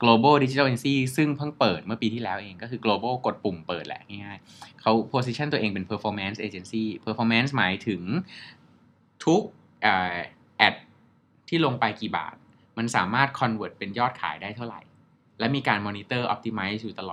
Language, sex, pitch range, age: Thai, male, 105-130 Hz, 20-39